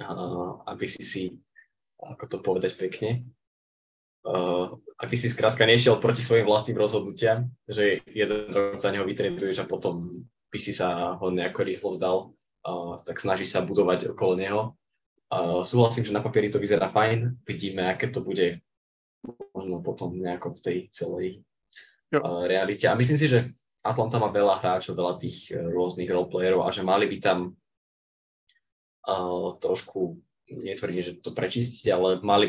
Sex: male